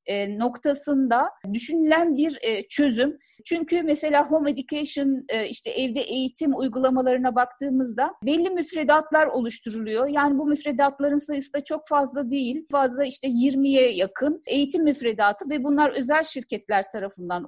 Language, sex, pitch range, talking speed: Turkish, female, 245-295 Hz, 120 wpm